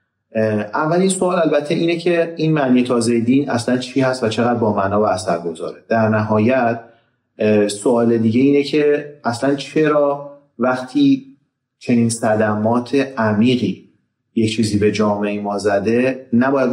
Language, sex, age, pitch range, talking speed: Persian, male, 30-49, 105-130 Hz, 135 wpm